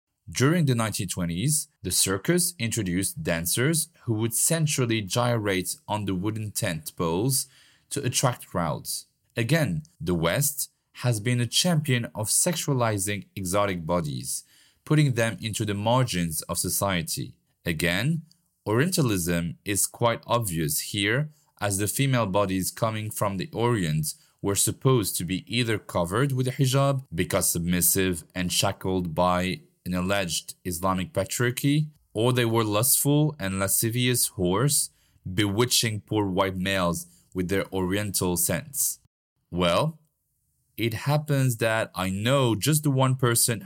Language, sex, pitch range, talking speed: French, male, 95-140 Hz, 130 wpm